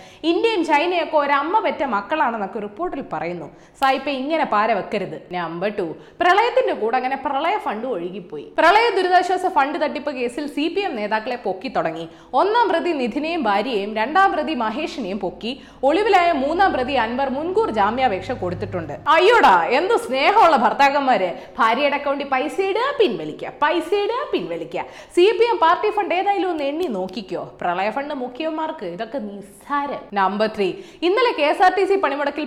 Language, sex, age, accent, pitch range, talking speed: Malayalam, female, 20-39, native, 230-355 Hz, 85 wpm